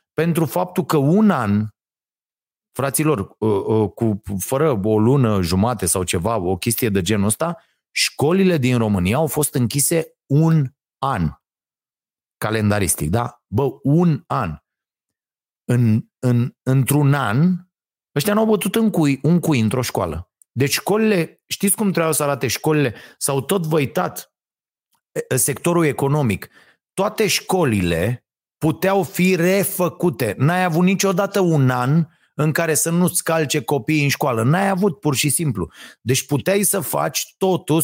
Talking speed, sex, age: 135 wpm, male, 30-49